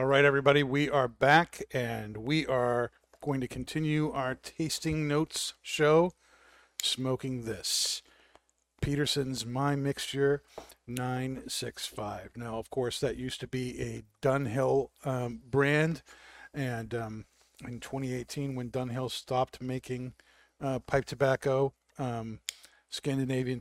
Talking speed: 115 wpm